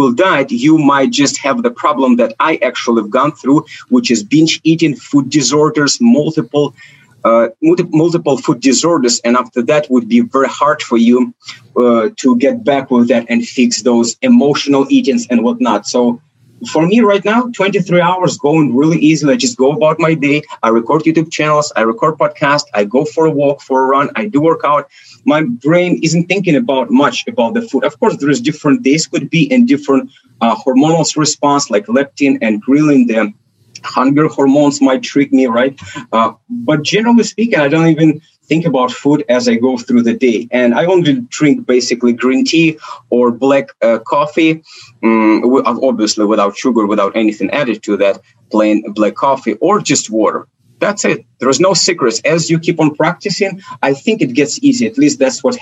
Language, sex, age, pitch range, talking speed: English, male, 30-49, 120-160 Hz, 190 wpm